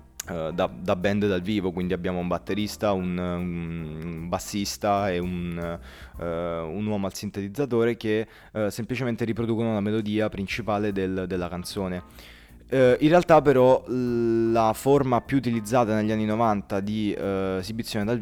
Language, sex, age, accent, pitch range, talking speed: Italian, male, 20-39, native, 90-110 Hz, 130 wpm